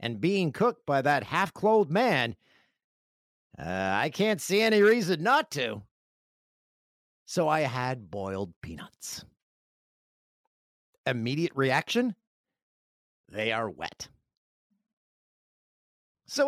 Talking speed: 95 wpm